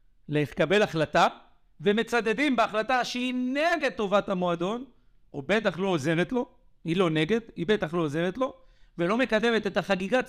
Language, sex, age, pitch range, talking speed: Hebrew, male, 50-69, 145-205 Hz, 145 wpm